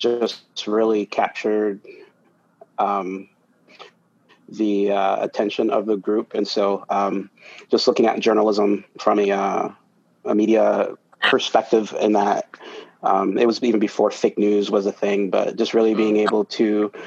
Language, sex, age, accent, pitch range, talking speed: English, male, 30-49, American, 100-110 Hz, 145 wpm